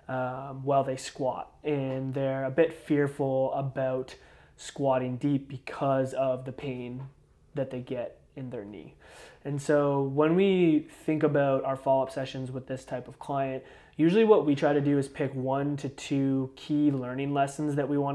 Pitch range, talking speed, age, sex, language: 130-150 Hz, 175 wpm, 20-39, male, English